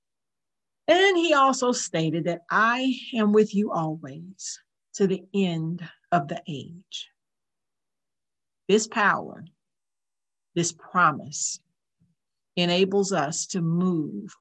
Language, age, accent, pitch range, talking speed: English, 50-69, American, 160-200 Hz, 100 wpm